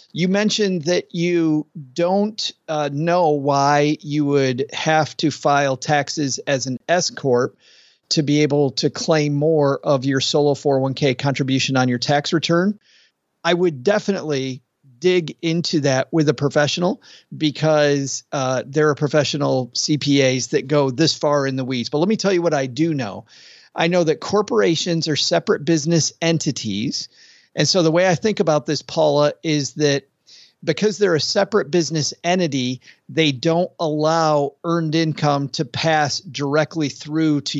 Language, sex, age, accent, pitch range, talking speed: English, male, 40-59, American, 145-175 Hz, 160 wpm